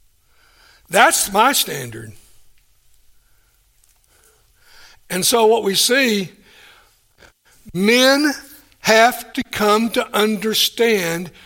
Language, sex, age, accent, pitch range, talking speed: English, male, 60-79, American, 185-240 Hz, 75 wpm